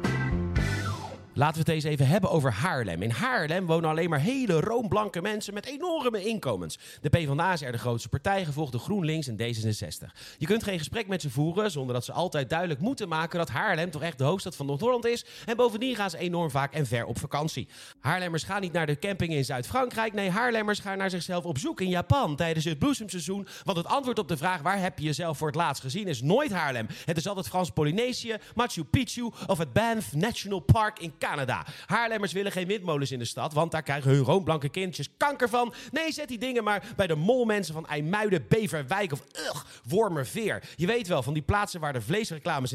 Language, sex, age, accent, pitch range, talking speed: Dutch, male, 40-59, Dutch, 140-205 Hz, 215 wpm